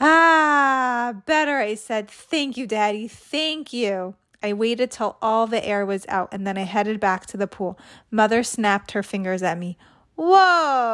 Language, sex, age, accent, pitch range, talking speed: English, female, 20-39, American, 205-285 Hz, 175 wpm